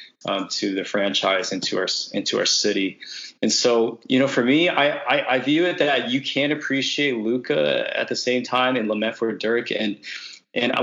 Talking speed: 200 wpm